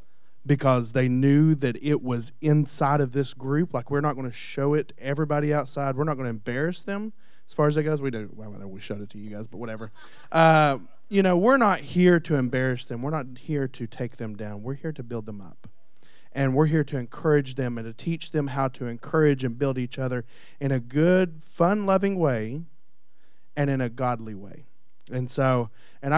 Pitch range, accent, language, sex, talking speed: 120-160 Hz, American, English, male, 215 wpm